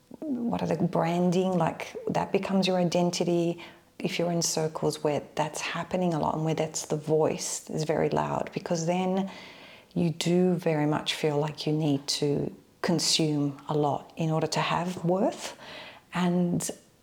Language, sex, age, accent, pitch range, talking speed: English, female, 40-59, Australian, 155-175 Hz, 160 wpm